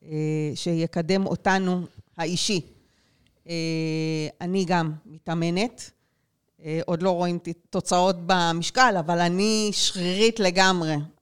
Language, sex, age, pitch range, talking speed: Hebrew, female, 40-59, 170-205 Hz, 80 wpm